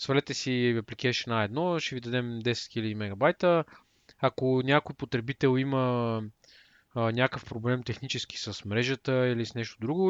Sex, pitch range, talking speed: male, 115-155 Hz, 150 wpm